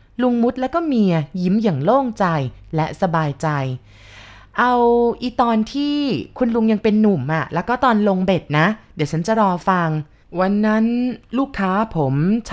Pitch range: 150-205 Hz